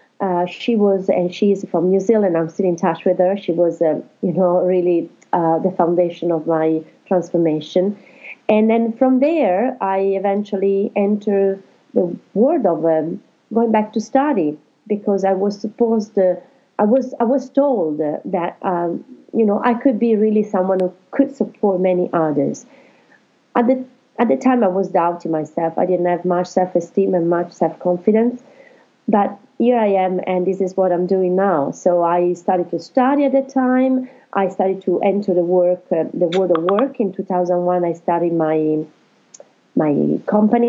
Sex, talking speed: female, 175 wpm